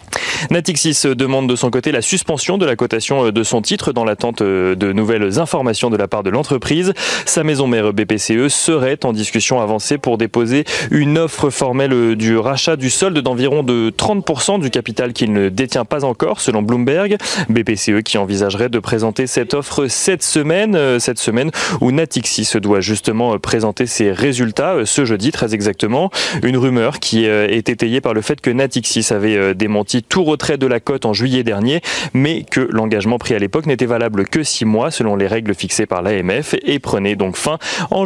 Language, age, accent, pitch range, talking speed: French, 30-49, French, 110-145 Hz, 185 wpm